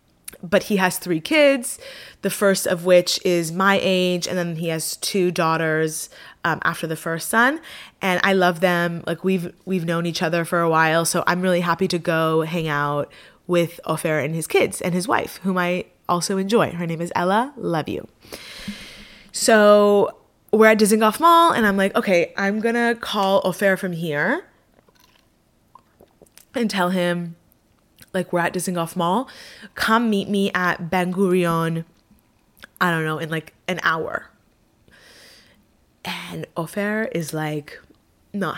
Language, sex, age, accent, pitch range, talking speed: English, female, 20-39, American, 170-200 Hz, 165 wpm